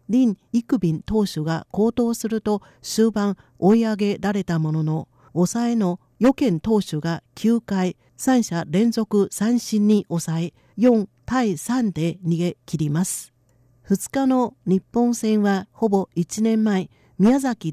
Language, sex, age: Japanese, female, 50-69